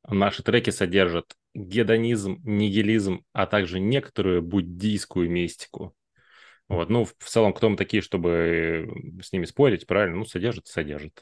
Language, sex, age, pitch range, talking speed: Russian, male, 20-39, 90-110 Hz, 135 wpm